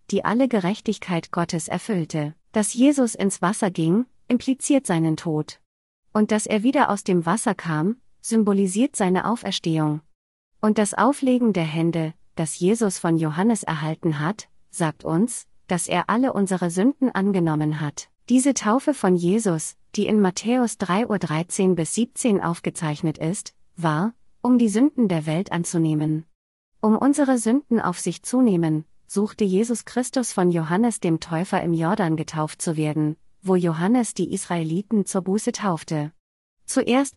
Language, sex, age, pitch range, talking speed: German, female, 30-49, 165-220 Hz, 145 wpm